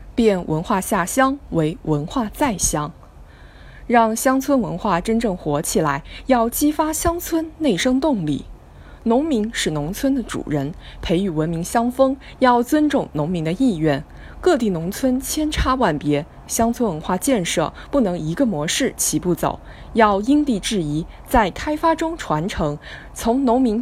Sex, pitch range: female, 160-270 Hz